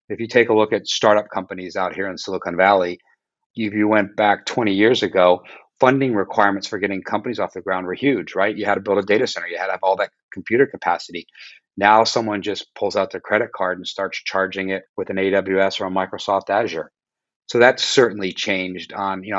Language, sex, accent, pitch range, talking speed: English, male, American, 95-110 Hz, 220 wpm